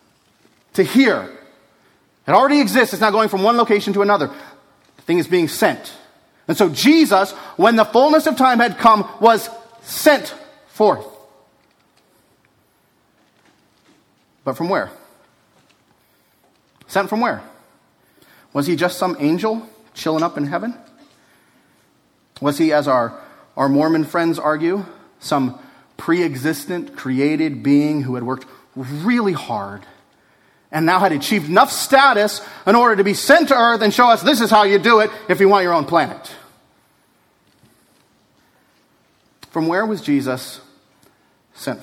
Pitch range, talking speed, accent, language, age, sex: 135-230 Hz, 140 wpm, American, English, 30-49, male